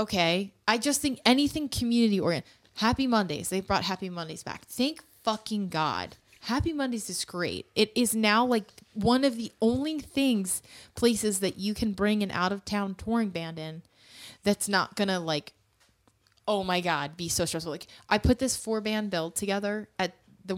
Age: 20-39